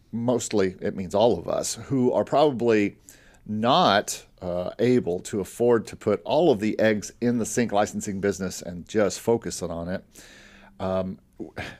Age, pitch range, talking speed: 50-69, 105-155 Hz, 160 wpm